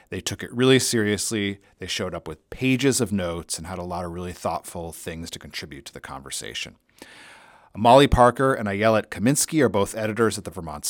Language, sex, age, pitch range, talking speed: English, male, 40-59, 85-115 Hz, 200 wpm